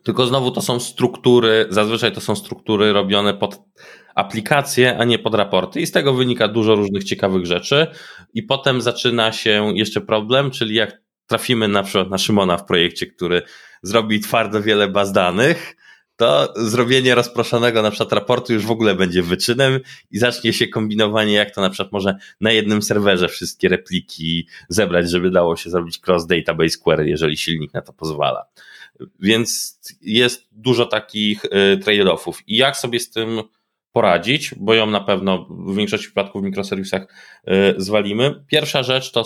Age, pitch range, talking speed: 20-39, 100-120 Hz, 165 wpm